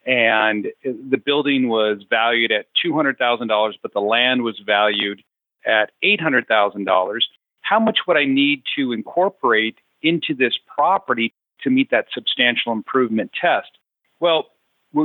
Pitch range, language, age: 110-150 Hz, English, 40-59